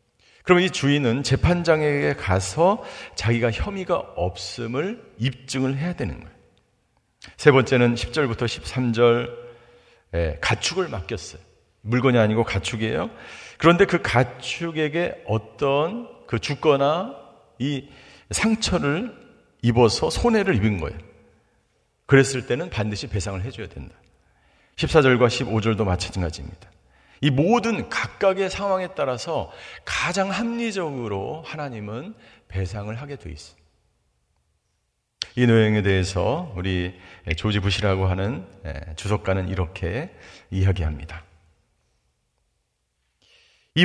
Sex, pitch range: male, 95-150 Hz